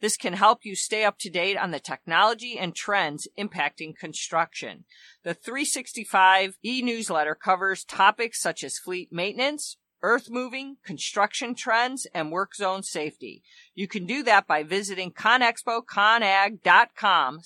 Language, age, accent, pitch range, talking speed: English, 50-69, American, 175-230 Hz, 135 wpm